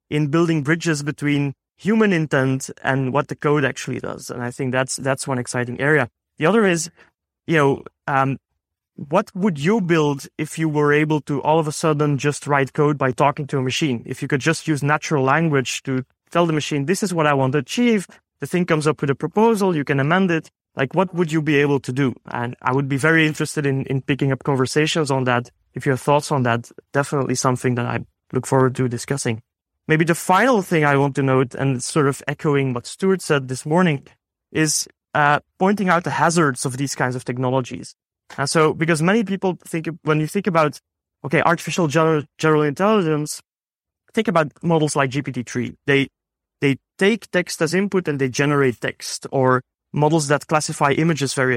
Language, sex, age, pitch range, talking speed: English, male, 30-49, 135-165 Hz, 205 wpm